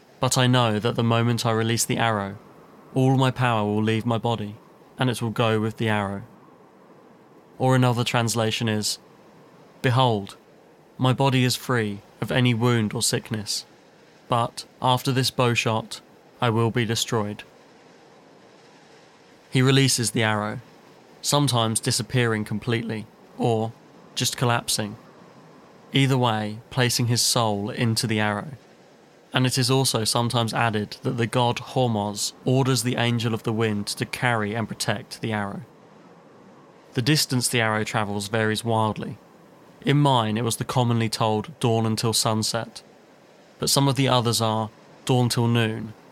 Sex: male